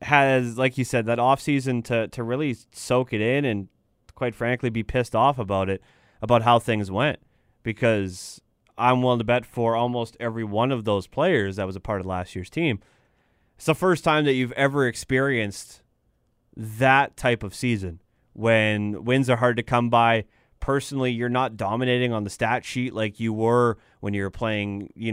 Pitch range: 110-130 Hz